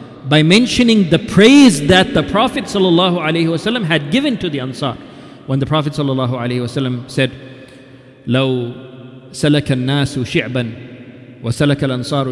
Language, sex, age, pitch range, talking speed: English, male, 40-59, 130-160 Hz, 115 wpm